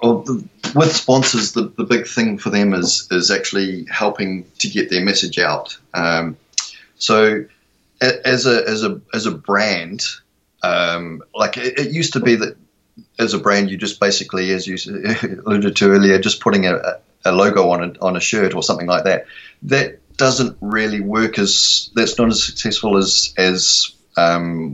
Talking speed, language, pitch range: 175 wpm, English, 95-120 Hz